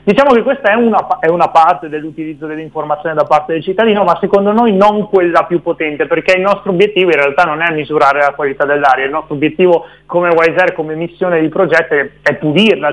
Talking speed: 200 wpm